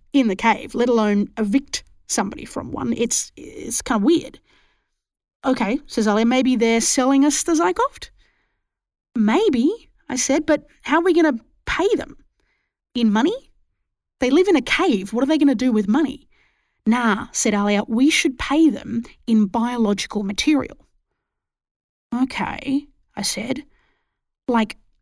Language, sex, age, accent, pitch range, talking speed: English, female, 30-49, Australian, 225-290 Hz, 150 wpm